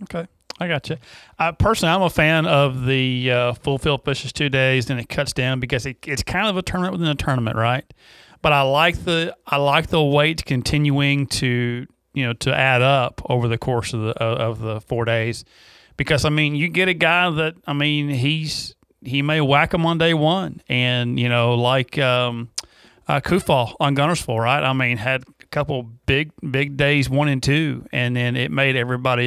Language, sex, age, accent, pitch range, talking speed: English, male, 40-59, American, 115-145 Hz, 205 wpm